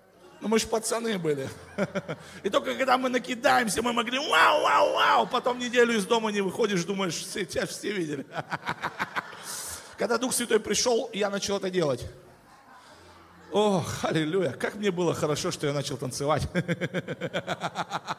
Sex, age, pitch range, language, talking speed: male, 40-59, 175-230 Hz, Russian, 140 wpm